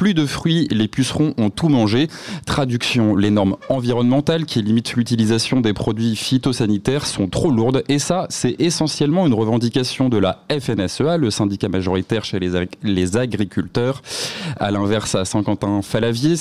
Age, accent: 20-39, French